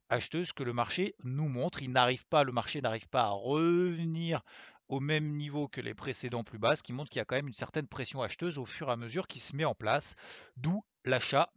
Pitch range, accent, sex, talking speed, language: 130-165 Hz, French, male, 245 wpm, French